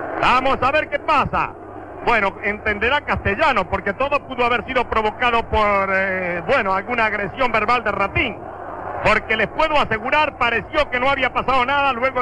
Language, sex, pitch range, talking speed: Spanish, male, 235-295 Hz, 160 wpm